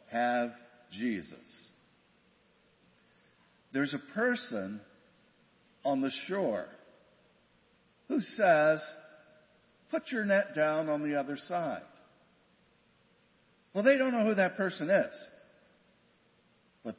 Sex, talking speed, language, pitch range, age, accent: male, 95 wpm, English, 120-195 Hz, 50-69, American